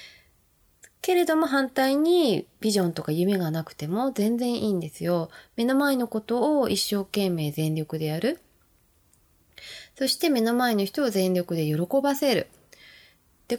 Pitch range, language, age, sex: 165-240 Hz, Japanese, 20-39, female